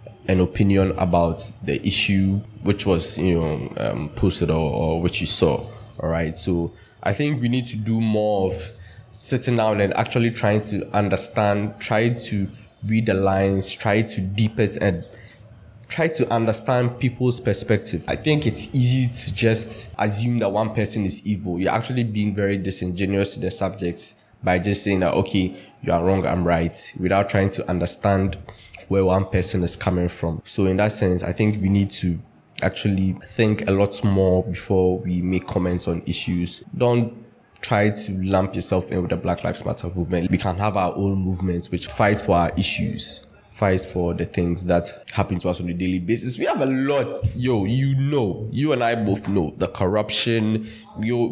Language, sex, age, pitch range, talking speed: English, male, 20-39, 90-115 Hz, 185 wpm